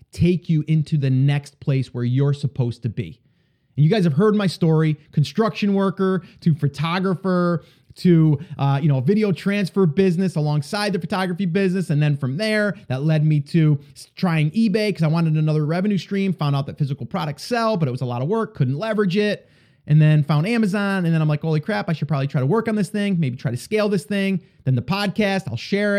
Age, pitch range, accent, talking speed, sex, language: 30-49, 145-190 Hz, American, 220 wpm, male, English